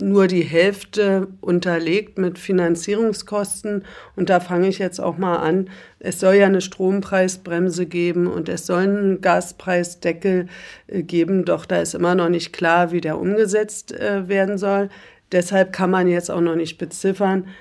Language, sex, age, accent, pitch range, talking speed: German, female, 50-69, German, 170-200 Hz, 155 wpm